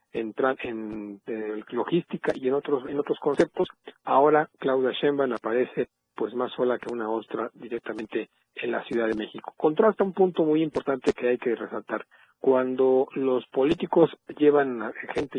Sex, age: male, 50-69